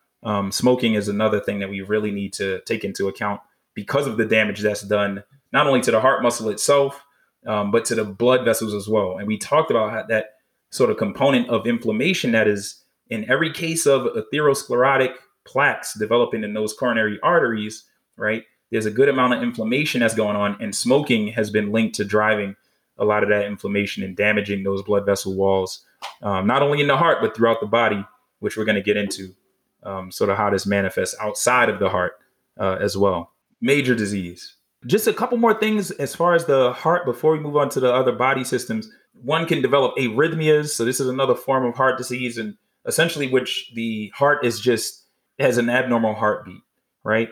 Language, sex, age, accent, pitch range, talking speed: English, male, 20-39, American, 105-135 Hz, 205 wpm